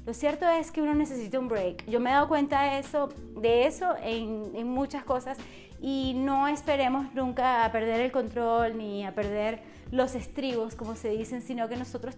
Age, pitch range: 30-49, 235-295 Hz